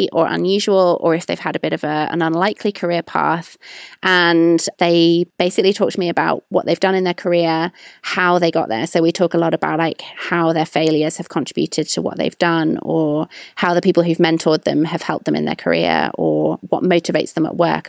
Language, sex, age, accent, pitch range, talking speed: English, female, 30-49, British, 165-195 Hz, 220 wpm